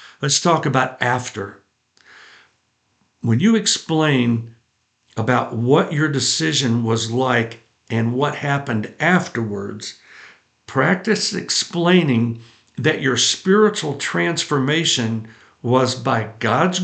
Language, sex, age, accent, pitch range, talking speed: English, male, 60-79, American, 125-170 Hz, 95 wpm